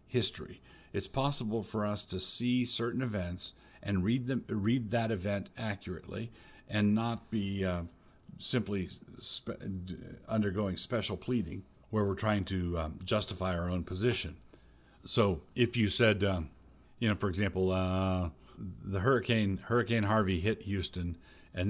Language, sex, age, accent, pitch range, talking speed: English, male, 50-69, American, 90-110 Hz, 140 wpm